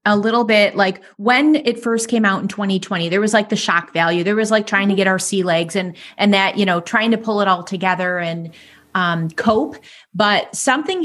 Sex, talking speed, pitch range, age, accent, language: female, 230 wpm, 195-245 Hz, 30-49, American, English